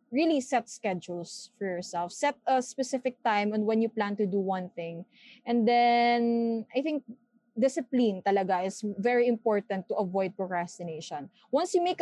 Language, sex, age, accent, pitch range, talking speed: English, female, 20-39, Filipino, 210-255 Hz, 160 wpm